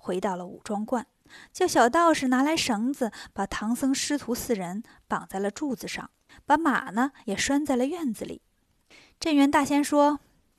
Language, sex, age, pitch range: Chinese, female, 20-39, 215-285 Hz